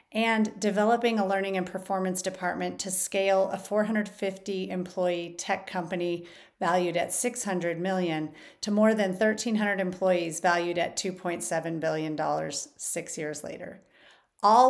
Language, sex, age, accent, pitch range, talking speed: English, female, 40-59, American, 170-210 Hz, 125 wpm